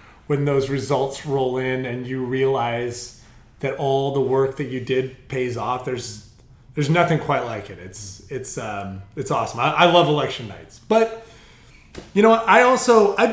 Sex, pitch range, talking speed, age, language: male, 125-165 Hz, 180 wpm, 30-49, English